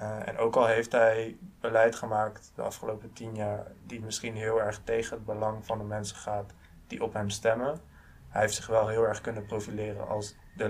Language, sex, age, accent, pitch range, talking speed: Dutch, male, 20-39, Dutch, 105-115 Hz, 210 wpm